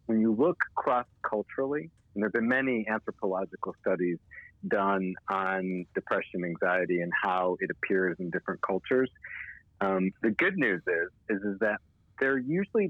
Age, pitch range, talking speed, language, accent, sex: 40-59, 95-135 Hz, 150 wpm, English, American, male